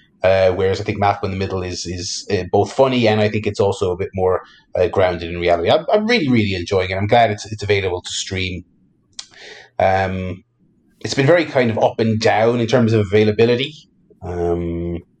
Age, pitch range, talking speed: 30-49, 95-115 Hz, 205 wpm